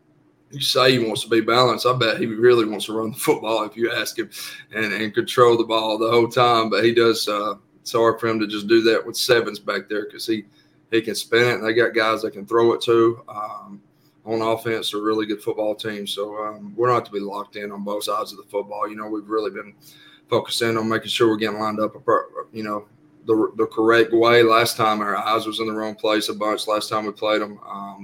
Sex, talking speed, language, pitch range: male, 255 wpm, English, 105-115 Hz